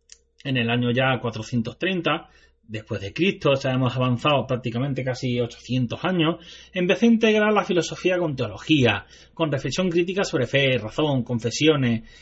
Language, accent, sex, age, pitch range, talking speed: Spanish, Spanish, male, 30-49, 130-170 Hz, 145 wpm